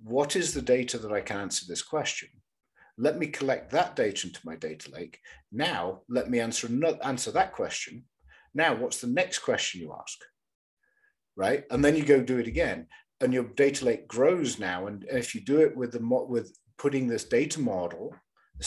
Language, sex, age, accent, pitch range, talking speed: English, male, 50-69, British, 105-140 Hz, 195 wpm